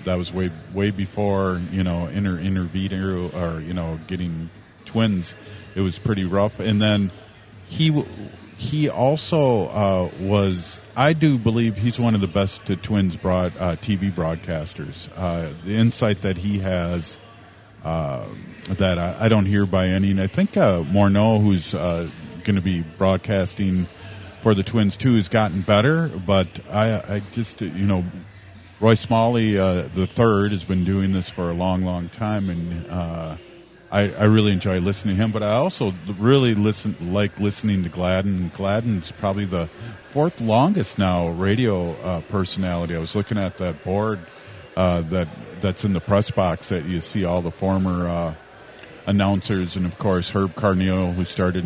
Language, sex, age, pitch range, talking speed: English, male, 40-59, 90-105 Hz, 170 wpm